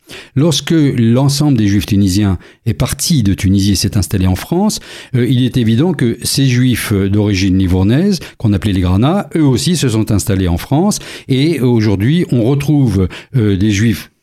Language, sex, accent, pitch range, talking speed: French, male, French, 110-150 Hz, 165 wpm